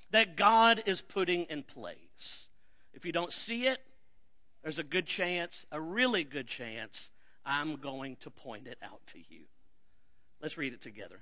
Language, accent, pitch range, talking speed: English, American, 175-260 Hz, 165 wpm